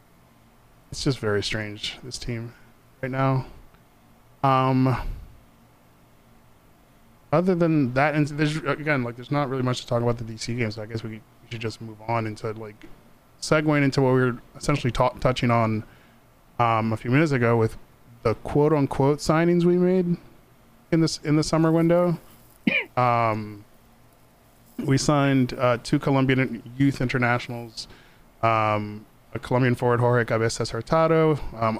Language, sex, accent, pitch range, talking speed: English, male, American, 110-135 Hz, 145 wpm